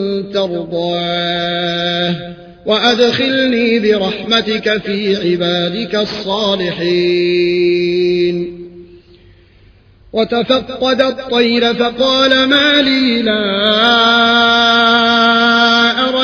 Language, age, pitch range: Arabic, 30-49, 175-230 Hz